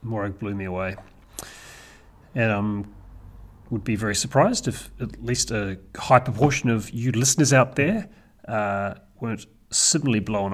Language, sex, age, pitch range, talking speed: English, male, 30-49, 100-125 Hz, 150 wpm